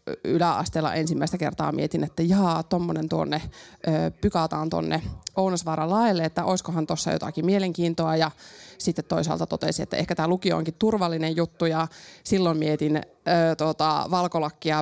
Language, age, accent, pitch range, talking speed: Finnish, 20-39, native, 160-195 Hz, 130 wpm